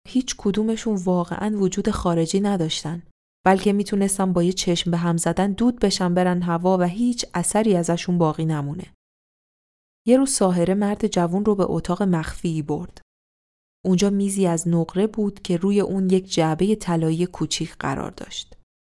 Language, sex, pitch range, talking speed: Persian, female, 170-205 Hz, 150 wpm